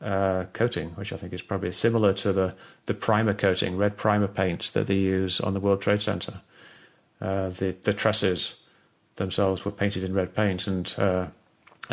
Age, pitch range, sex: 30-49, 95-110 Hz, male